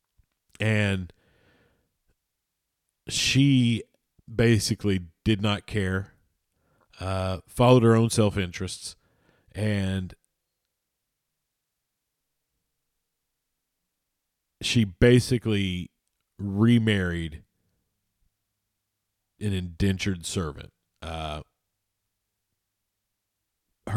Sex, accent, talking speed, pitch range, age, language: male, American, 50 wpm, 90-115 Hz, 40-59, English